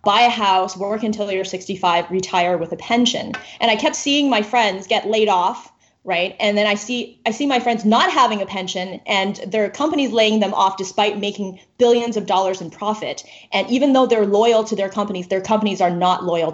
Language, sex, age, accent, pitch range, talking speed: English, female, 20-39, American, 190-245 Hz, 215 wpm